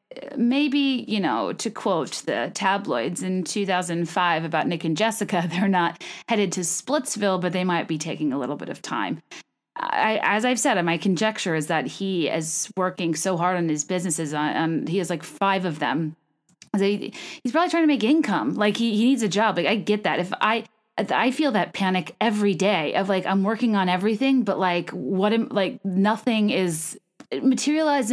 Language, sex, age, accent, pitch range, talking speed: English, female, 30-49, American, 175-220 Hz, 205 wpm